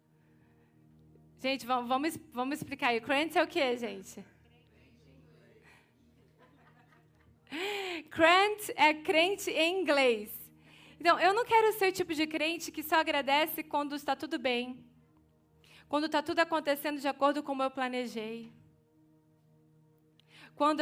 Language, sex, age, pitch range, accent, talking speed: Portuguese, female, 20-39, 210-310 Hz, Brazilian, 120 wpm